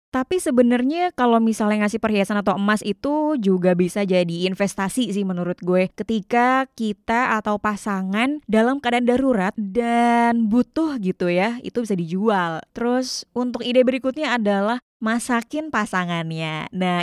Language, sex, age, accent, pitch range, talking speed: Indonesian, female, 20-39, native, 205-260 Hz, 135 wpm